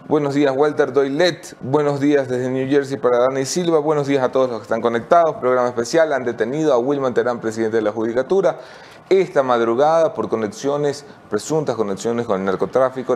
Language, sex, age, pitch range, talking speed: English, male, 30-49, 100-130 Hz, 180 wpm